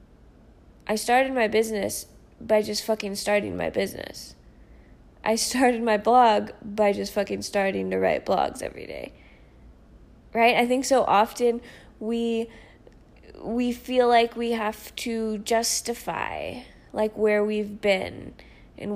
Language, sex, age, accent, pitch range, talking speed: English, female, 20-39, American, 215-265 Hz, 130 wpm